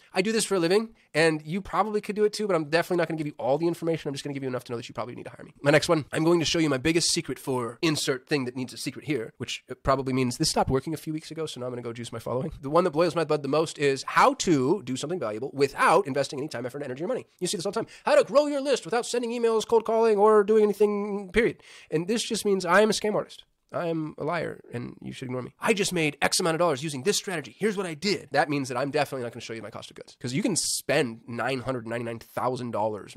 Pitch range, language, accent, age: 125-190 Hz, English, American, 30-49